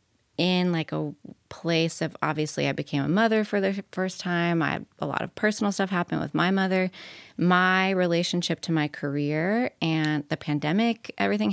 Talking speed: 170 wpm